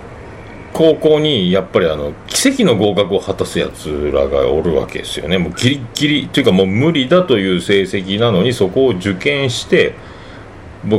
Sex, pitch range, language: male, 95-155 Hz, Japanese